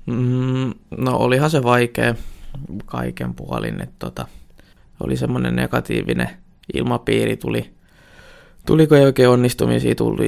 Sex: male